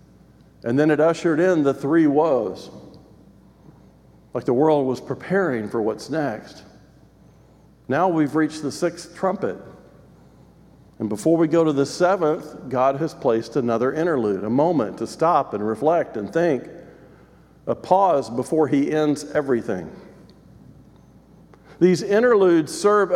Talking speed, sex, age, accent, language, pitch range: 130 wpm, male, 50-69, American, English, 145-190 Hz